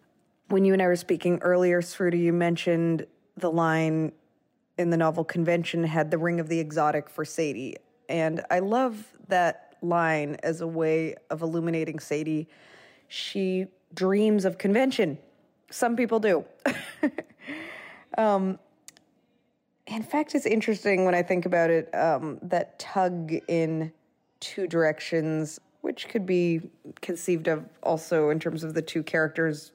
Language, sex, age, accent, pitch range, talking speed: English, female, 20-39, American, 160-200 Hz, 140 wpm